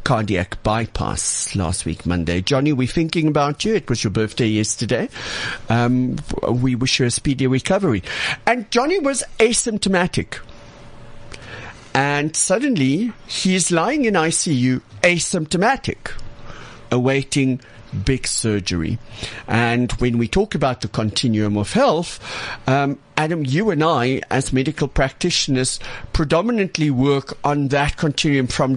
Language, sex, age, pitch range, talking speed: English, male, 50-69, 115-165 Hz, 125 wpm